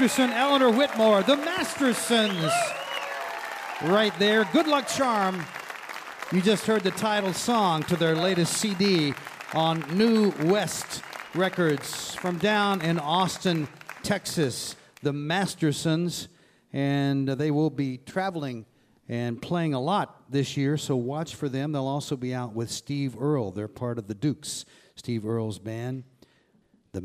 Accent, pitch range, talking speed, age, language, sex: American, 130-180 Hz, 135 wpm, 40-59, English, male